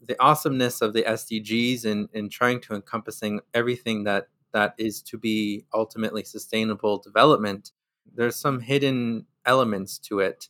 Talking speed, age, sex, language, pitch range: 145 wpm, 20-39, male, English, 105-120 Hz